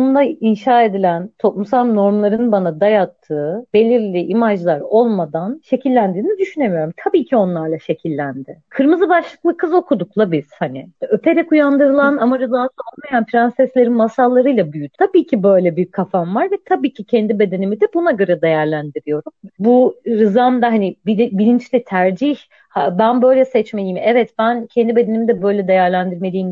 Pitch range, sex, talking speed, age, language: 185-260 Hz, female, 135 wpm, 40-59, Turkish